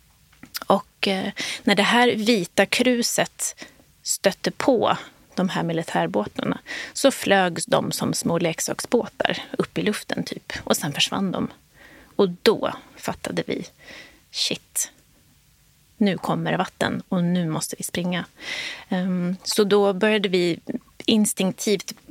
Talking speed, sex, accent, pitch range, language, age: 120 wpm, female, native, 180-235 Hz, Swedish, 30-49